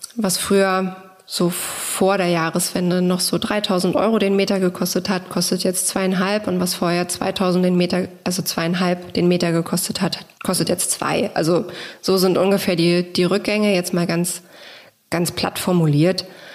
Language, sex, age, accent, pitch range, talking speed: German, female, 20-39, German, 180-200 Hz, 165 wpm